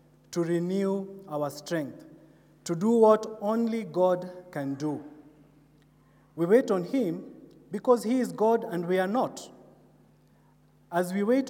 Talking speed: 135 wpm